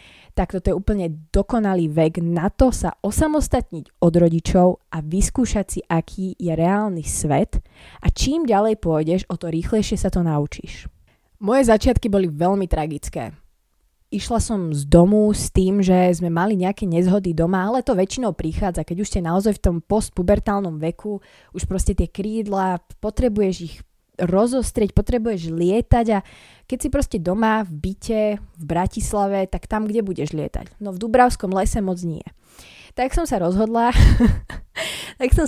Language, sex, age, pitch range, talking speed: Slovak, female, 20-39, 170-215 Hz, 155 wpm